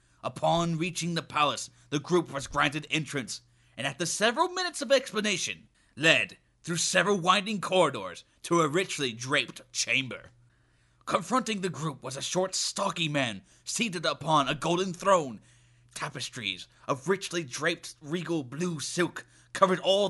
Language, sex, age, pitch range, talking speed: English, male, 30-49, 130-185 Hz, 140 wpm